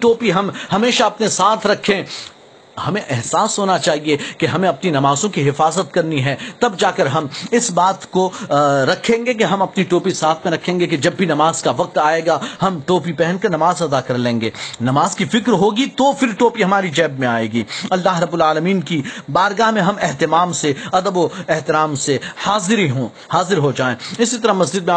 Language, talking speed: Urdu, 160 wpm